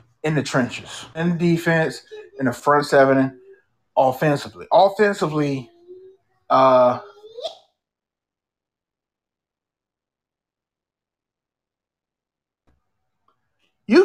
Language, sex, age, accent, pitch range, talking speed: English, male, 30-49, American, 150-250 Hz, 60 wpm